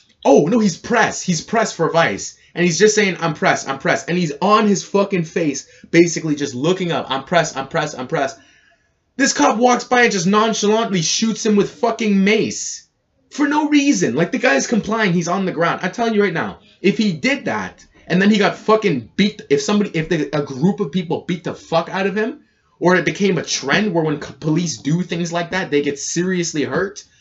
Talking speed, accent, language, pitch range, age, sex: 220 wpm, American, English, 145-205 Hz, 20-39, male